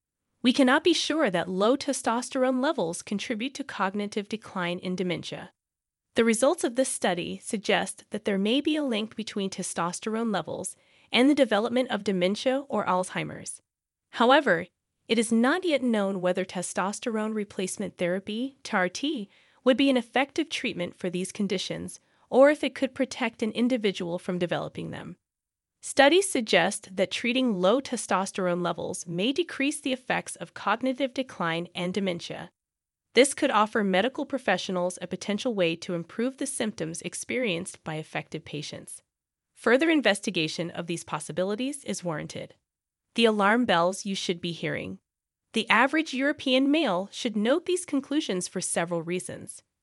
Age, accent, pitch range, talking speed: 20-39, American, 180-260 Hz, 145 wpm